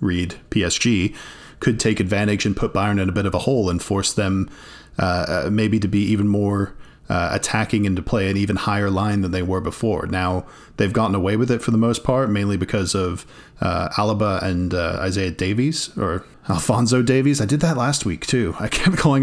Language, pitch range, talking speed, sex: English, 95-115 Hz, 210 wpm, male